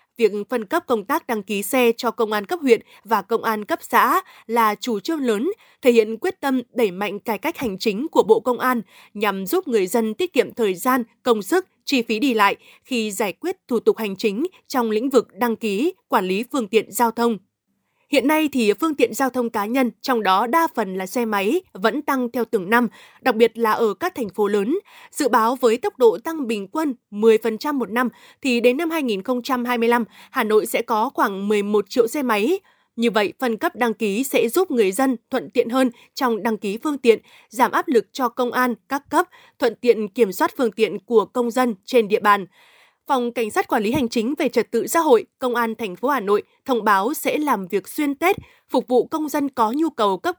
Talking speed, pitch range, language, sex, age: 225 wpm, 220-285 Hz, Vietnamese, female, 20-39